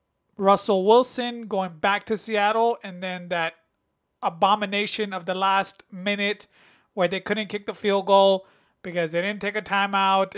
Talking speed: 155 wpm